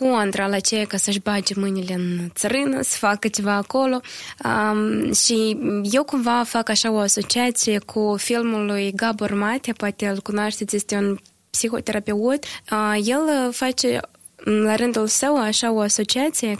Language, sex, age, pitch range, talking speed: Romanian, female, 20-39, 210-255 Hz, 150 wpm